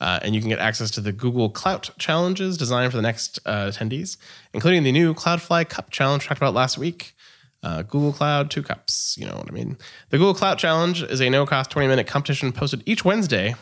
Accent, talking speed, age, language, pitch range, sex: American, 215 wpm, 20-39, English, 105-145 Hz, male